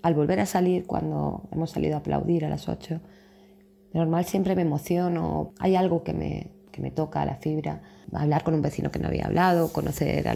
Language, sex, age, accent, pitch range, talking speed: Spanish, female, 20-39, Spanish, 150-180 Hz, 205 wpm